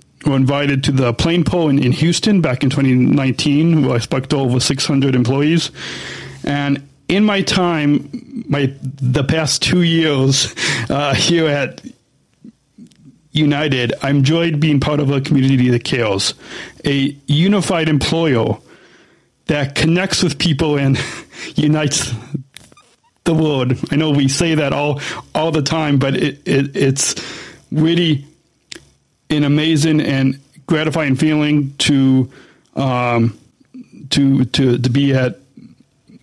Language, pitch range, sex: English, 130-155 Hz, male